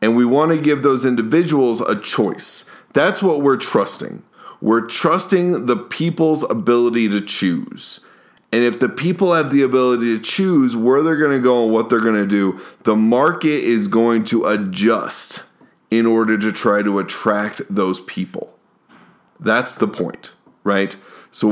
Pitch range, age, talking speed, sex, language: 105-130 Hz, 20-39, 165 wpm, male, English